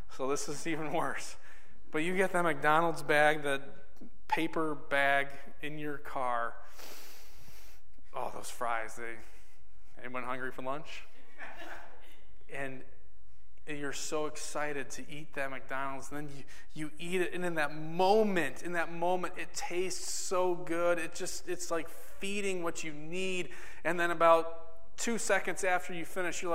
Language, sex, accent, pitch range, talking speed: English, male, American, 130-170 Hz, 155 wpm